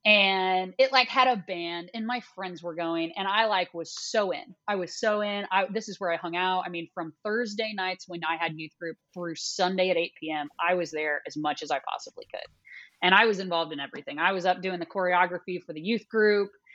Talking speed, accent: 245 wpm, American